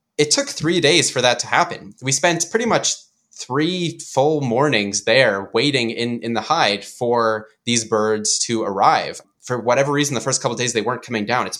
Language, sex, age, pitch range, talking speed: English, male, 20-39, 110-145 Hz, 200 wpm